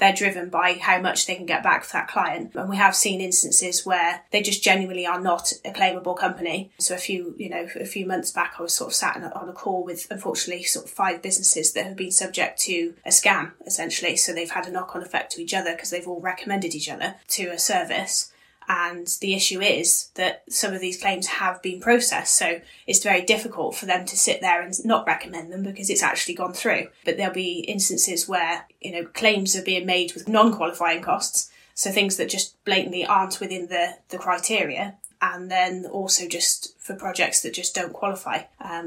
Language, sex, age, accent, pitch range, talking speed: English, female, 10-29, British, 175-200 Hz, 220 wpm